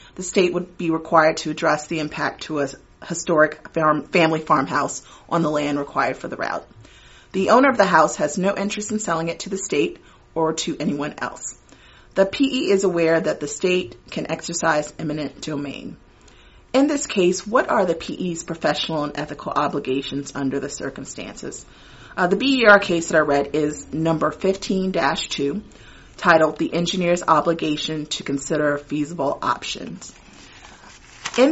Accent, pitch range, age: American, 150-190 Hz, 30-49